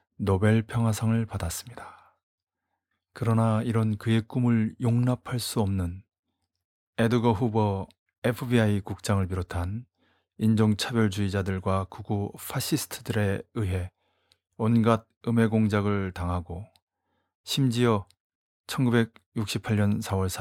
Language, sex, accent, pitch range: Korean, male, native, 95-115 Hz